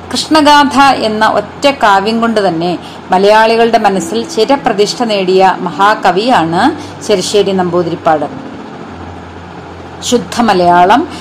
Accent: native